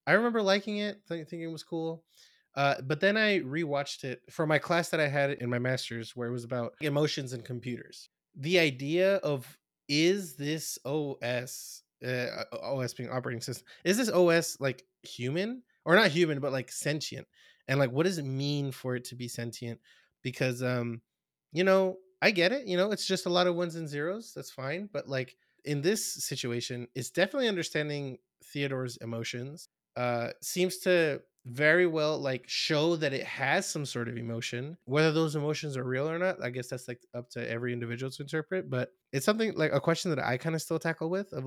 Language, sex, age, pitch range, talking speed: English, male, 20-39, 125-170 Hz, 200 wpm